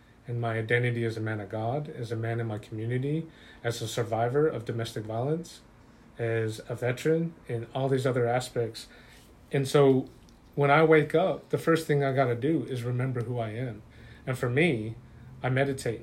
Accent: American